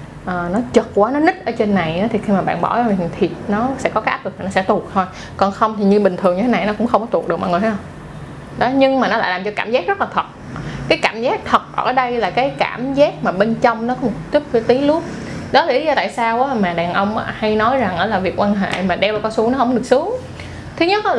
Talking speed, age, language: 290 wpm, 20-39, Vietnamese